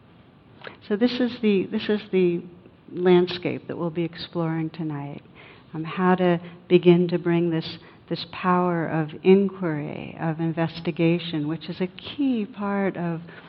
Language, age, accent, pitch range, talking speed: English, 60-79, American, 165-185 Hz, 140 wpm